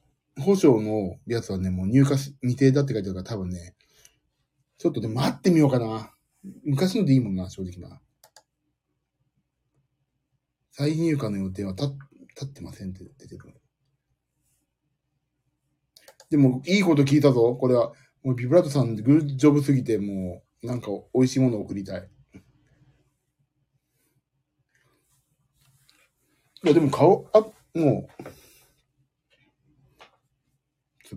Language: Japanese